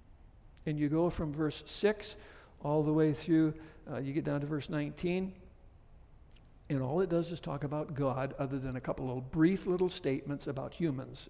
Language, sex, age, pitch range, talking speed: English, male, 60-79, 100-150 Hz, 185 wpm